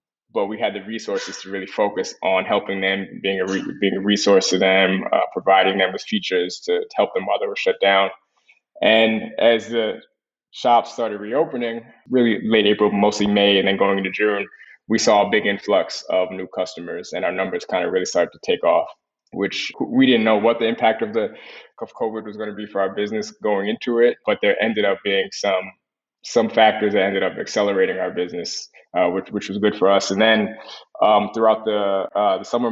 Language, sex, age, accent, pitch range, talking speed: English, male, 20-39, American, 100-110 Hz, 215 wpm